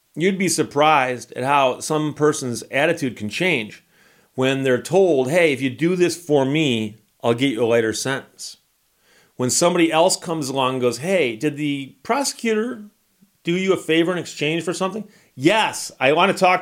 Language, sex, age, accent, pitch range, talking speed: English, male, 40-59, American, 135-180 Hz, 180 wpm